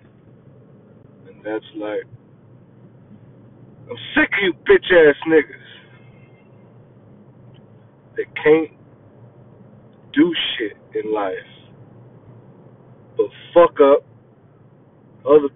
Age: 40-59